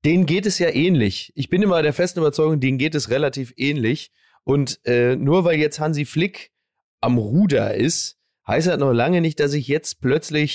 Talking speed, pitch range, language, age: 200 wpm, 130-175 Hz, German, 30-49